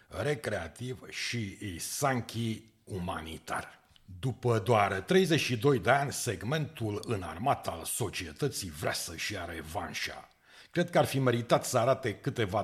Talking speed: 120 wpm